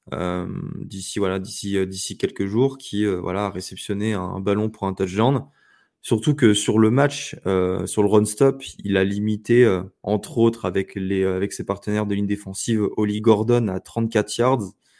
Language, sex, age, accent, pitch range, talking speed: French, male, 20-39, French, 100-130 Hz, 190 wpm